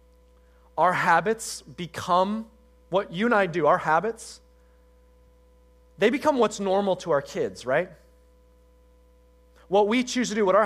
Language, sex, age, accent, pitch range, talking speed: English, male, 30-49, American, 145-225 Hz, 140 wpm